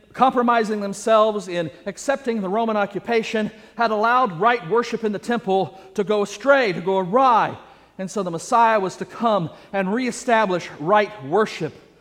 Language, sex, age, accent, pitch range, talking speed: English, male, 40-59, American, 175-225 Hz, 155 wpm